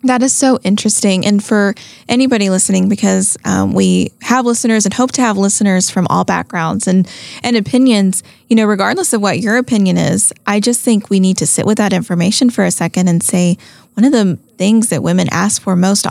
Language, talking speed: English, 210 wpm